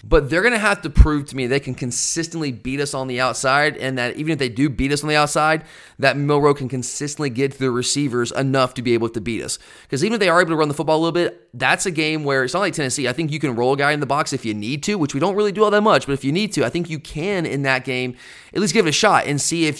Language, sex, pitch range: English, male, 130-165 Hz